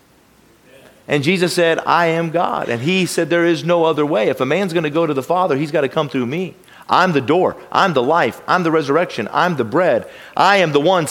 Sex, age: male, 40-59